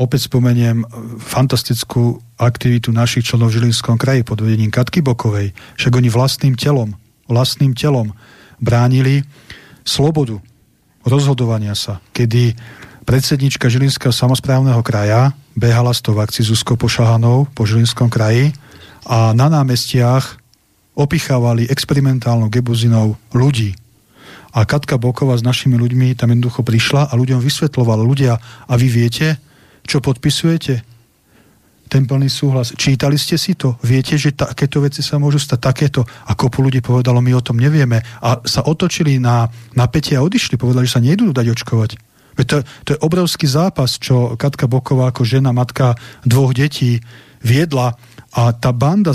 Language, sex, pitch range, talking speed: Slovak, male, 120-140 Hz, 140 wpm